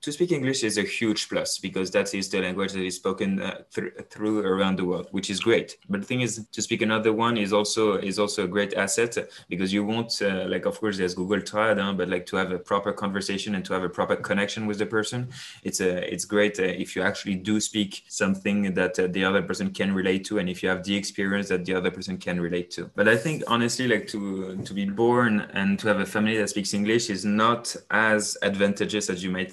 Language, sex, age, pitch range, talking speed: English, male, 20-39, 95-105 Hz, 245 wpm